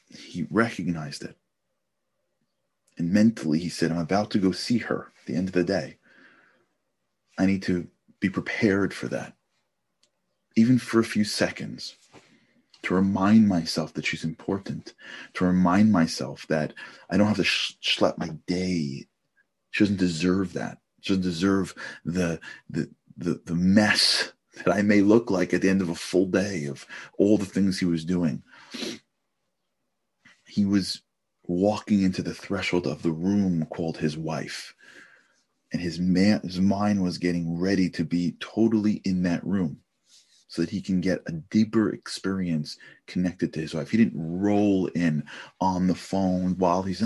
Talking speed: 160 wpm